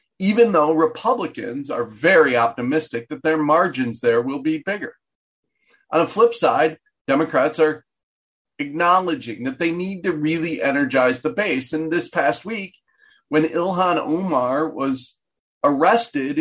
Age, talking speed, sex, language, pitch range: 40-59, 135 wpm, male, English, 145-235 Hz